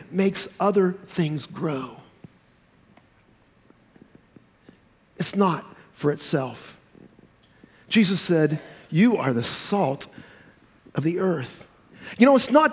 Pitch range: 150-220 Hz